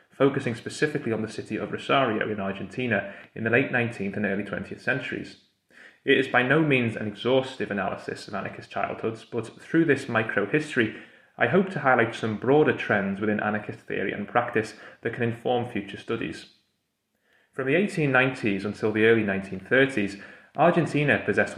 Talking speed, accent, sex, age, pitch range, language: 160 wpm, British, male, 30-49, 105-125 Hz, English